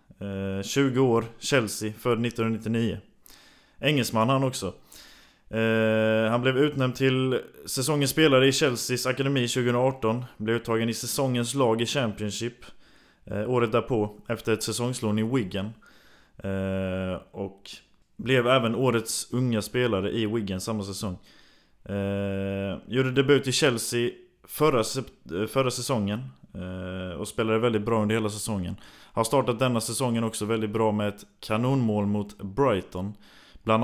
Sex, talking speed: male, 135 wpm